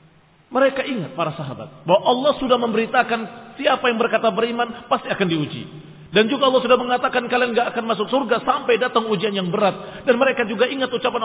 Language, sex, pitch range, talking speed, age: Indonesian, male, 185-250 Hz, 185 wpm, 40-59